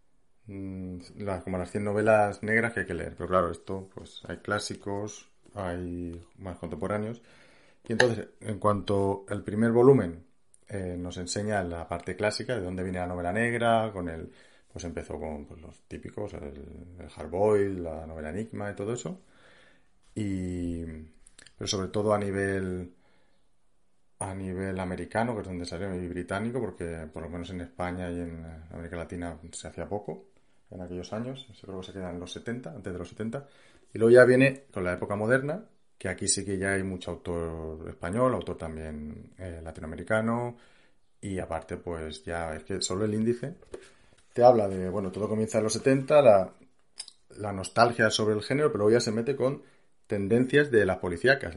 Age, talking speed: 30-49, 175 wpm